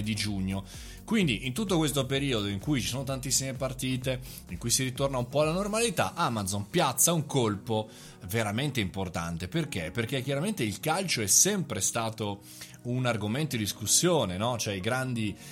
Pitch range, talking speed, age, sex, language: 105-140 Hz, 165 wpm, 20-39, male, Italian